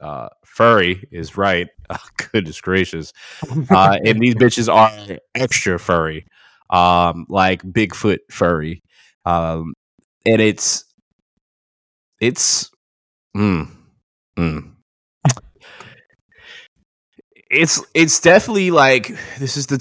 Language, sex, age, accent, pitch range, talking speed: Finnish, male, 20-39, American, 85-130 Hz, 95 wpm